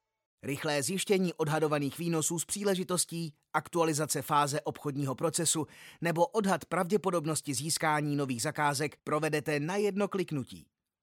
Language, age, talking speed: Czech, 30-49, 110 wpm